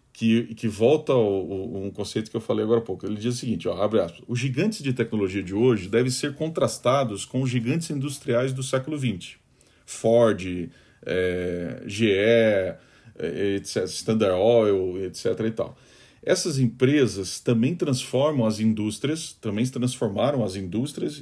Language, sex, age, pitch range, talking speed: Portuguese, male, 40-59, 115-140 Hz, 160 wpm